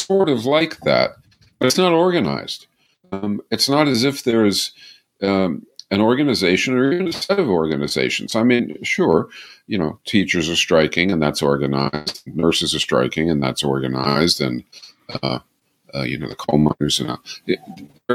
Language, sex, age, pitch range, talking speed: English, male, 50-69, 80-125 Hz, 175 wpm